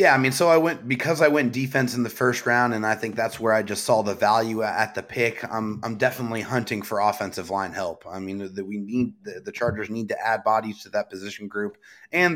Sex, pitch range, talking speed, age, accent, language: male, 110-130 Hz, 250 wpm, 30-49, American, English